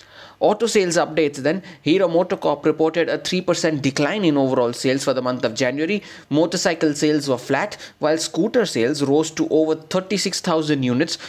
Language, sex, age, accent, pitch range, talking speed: English, male, 30-49, Indian, 145-170 Hz, 160 wpm